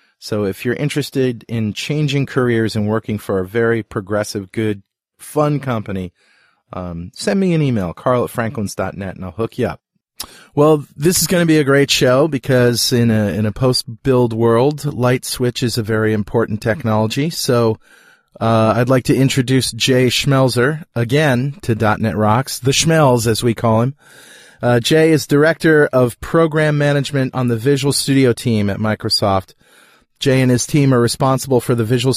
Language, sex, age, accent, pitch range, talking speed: English, male, 30-49, American, 115-140 Hz, 175 wpm